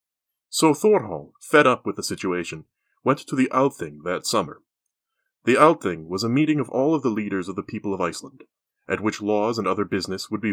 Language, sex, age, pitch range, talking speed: English, male, 30-49, 100-145 Hz, 205 wpm